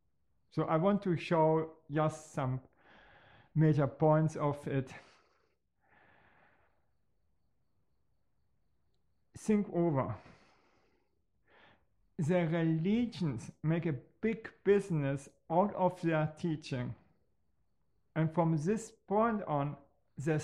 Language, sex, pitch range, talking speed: English, male, 150-180 Hz, 85 wpm